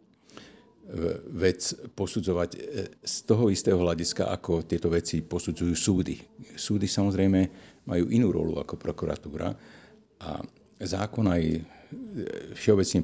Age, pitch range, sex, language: 50-69, 80-95 Hz, male, Slovak